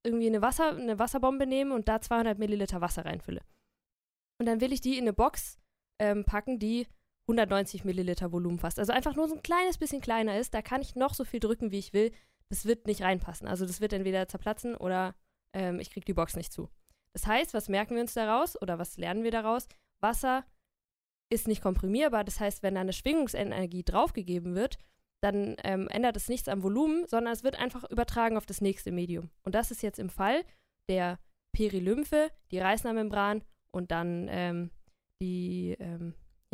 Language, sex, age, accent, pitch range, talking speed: German, female, 20-39, German, 185-245 Hz, 190 wpm